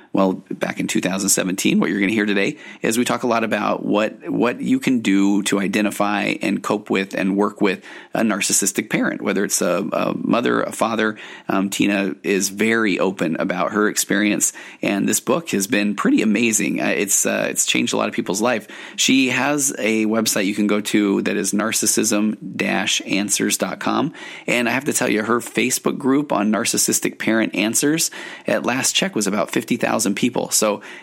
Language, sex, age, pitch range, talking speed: English, male, 30-49, 100-110 Hz, 185 wpm